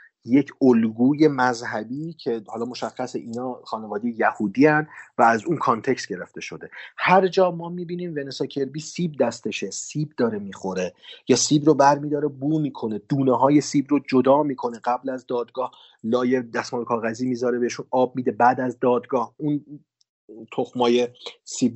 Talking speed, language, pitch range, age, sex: 150 wpm, Persian, 120-145 Hz, 40-59, male